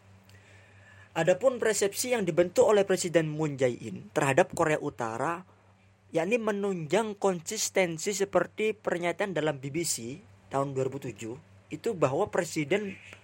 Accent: Indonesian